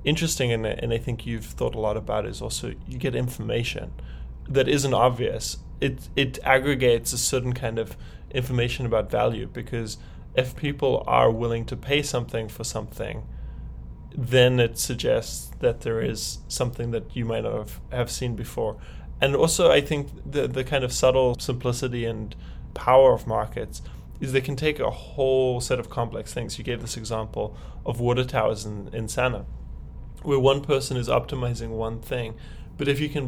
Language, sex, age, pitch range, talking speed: English, male, 10-29, 115-135 Hz, 180 wpm